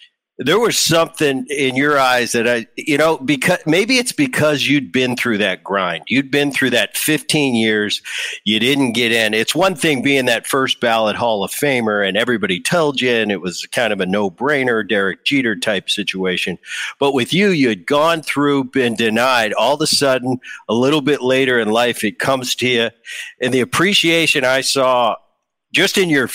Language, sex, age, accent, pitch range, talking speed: English, male, 50-69, American, 115-145 Hz, 195 wpm